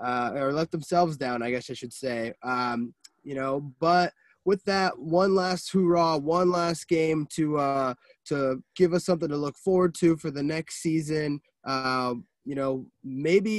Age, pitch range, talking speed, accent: 20-39, 130-165 Hz, 175 wpm, American